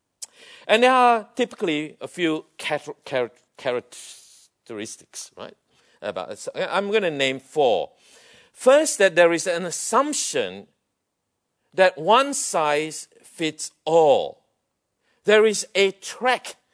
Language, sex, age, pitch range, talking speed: English, male, 50-69, 150-245 Hz, 100 wpm